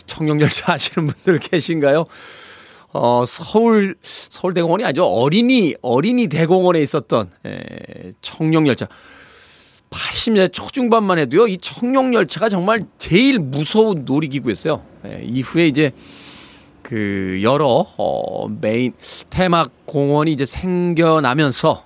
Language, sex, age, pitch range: Korean, male, 40-59, 125-180 Hz